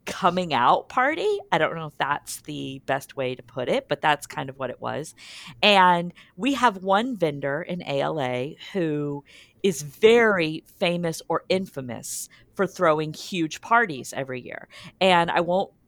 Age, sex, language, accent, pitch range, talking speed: 40-59, female, English, American, 145-190 Hz, 165 wpm